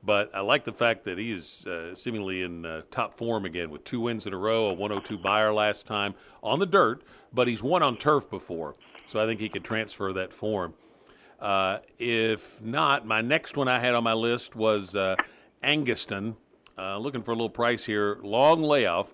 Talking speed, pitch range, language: 205 wpm, 100-120 Hz, English